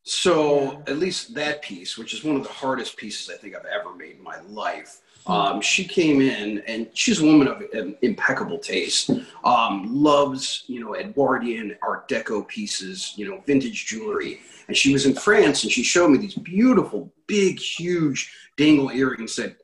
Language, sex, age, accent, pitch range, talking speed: English, male, 40-59, American, 130-185 Hz, 185 wpm